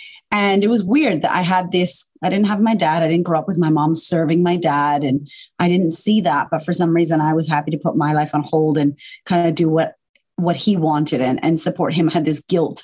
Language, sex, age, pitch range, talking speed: English, female, 30-49, 155-190 Hz, 265 wpm